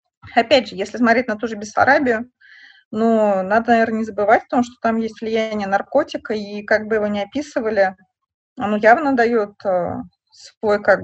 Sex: female